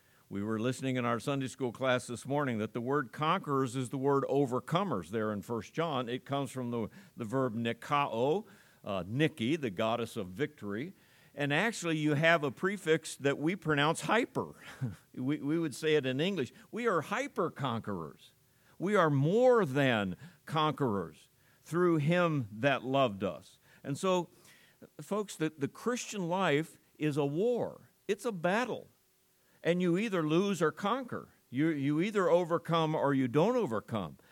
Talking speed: 165 wpm